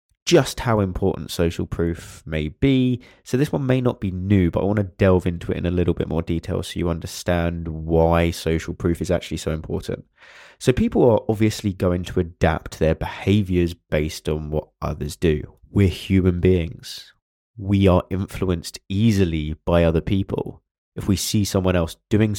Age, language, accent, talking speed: 20-39, English, British, 180 wpm